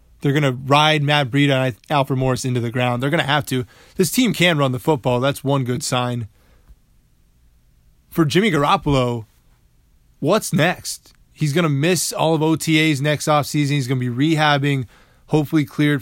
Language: English